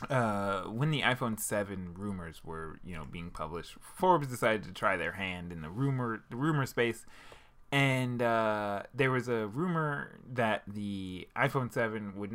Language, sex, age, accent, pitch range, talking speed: English, male, 20-39, American, 100-125 Hz, 165 wpm